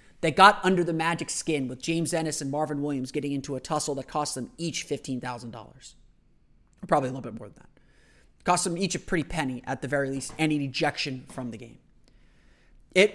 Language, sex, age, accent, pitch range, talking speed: English, male, 30-49, American, 130-175 Hz, 210 wpm